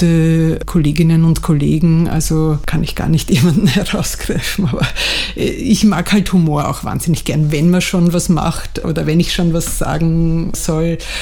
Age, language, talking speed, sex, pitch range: 50-69, German, 160 wpm, female, 160-180 Hz